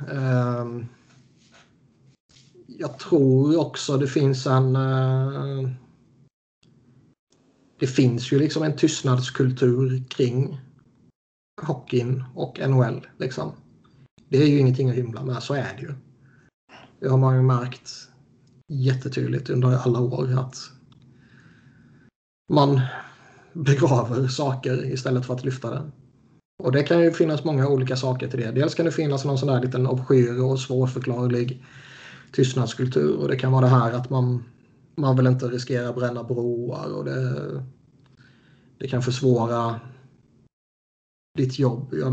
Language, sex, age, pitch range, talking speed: Swedish, male, 30-49, 125-135 Hz, 130 wpm